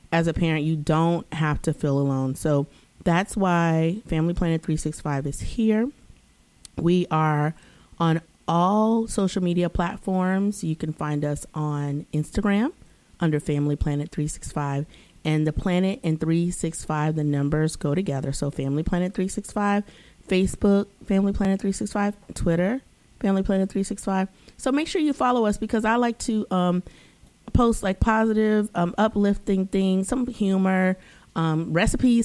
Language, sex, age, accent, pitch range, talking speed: English, female, 30-49, American, 155-205 Hz, 140 wpm